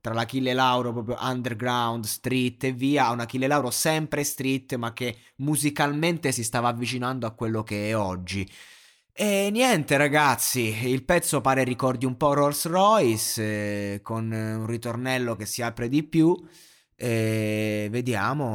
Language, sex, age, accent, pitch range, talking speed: Italian, male, 20-39, native, 110-130 Hz, 150 wpm